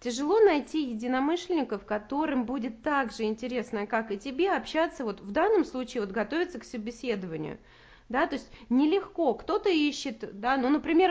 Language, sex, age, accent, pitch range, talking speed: Russian, female, 30-49, native, 215-275 Hz, 155 wpm